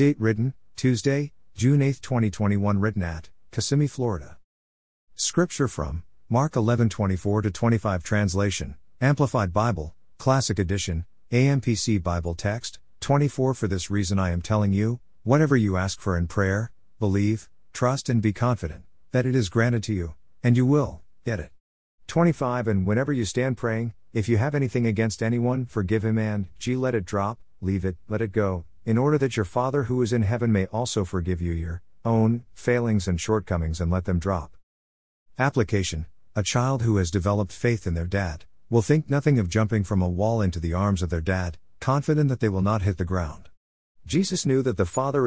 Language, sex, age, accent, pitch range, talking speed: English, male, 50-69, American, 90-120 Hz, 180 wpm